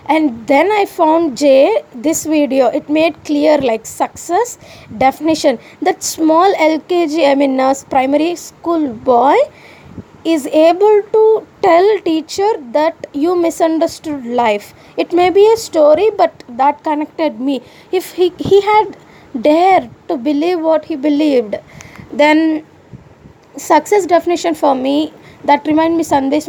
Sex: female